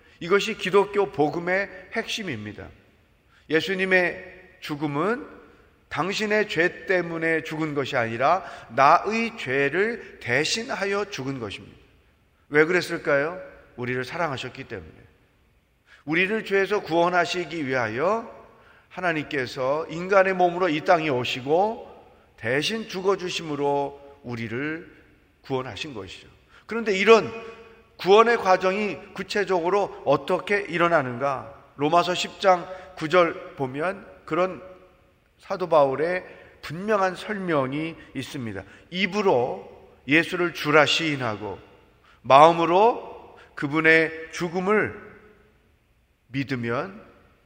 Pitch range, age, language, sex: 140-190 Hz, 40-59, Korean, male